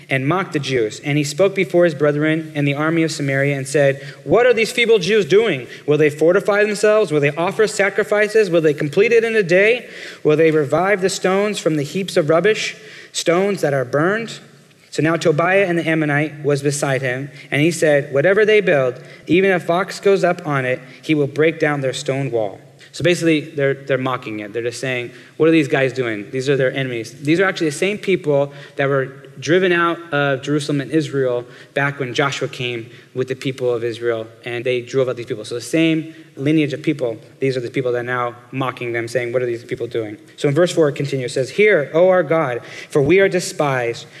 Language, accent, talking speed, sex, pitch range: English, American, 225 wpm, male, 135-175 Hz